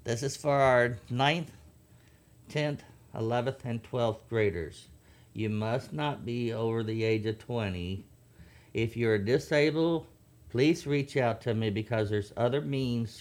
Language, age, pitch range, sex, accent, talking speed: English, 50-69, 100-120 Hz, male, American, 140 wpm